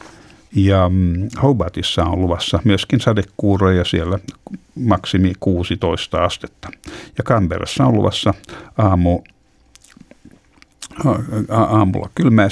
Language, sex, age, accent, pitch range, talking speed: Finnish, male, 60-79, native, 90-105 Hz, 75 wpm